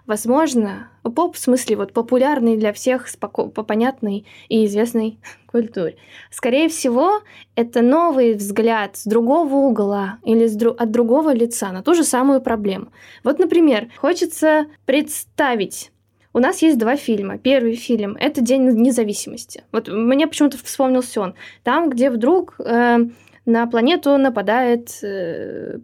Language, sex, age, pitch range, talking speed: Russian, female, 10-29, 230-280 Hz, 140 wpm